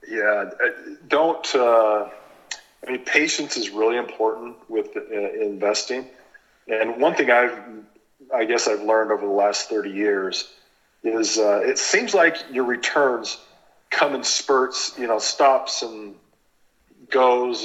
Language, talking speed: English, 135 wpm